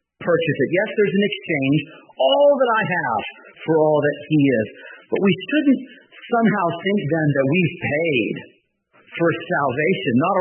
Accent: American